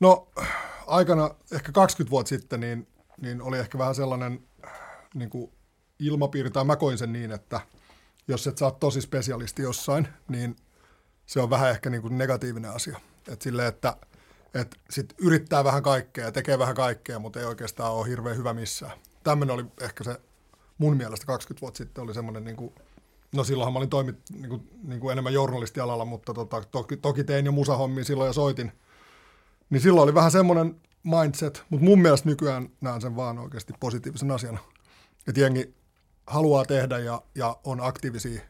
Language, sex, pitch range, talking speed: Finnish, male, 120-140 Hz, 165 wpm